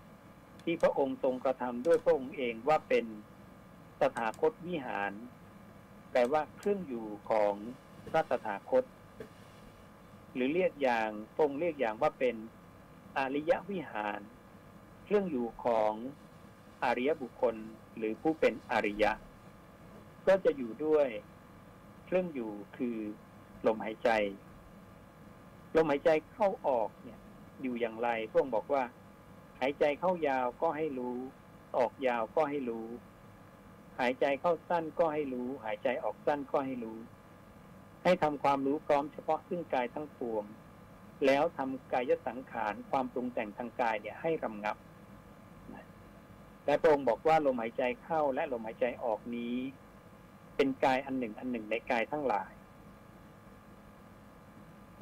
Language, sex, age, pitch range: Thai, male, 60-79, 115-160 Hz